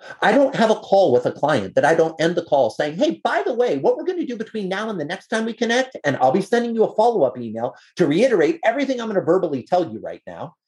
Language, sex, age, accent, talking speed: English, male, 30-49, American, 285 wpm